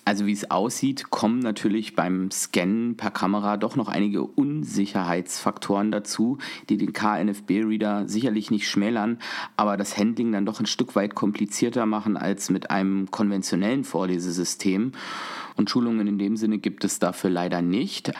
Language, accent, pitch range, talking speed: German, German, 95-115 Hz, 150 wpm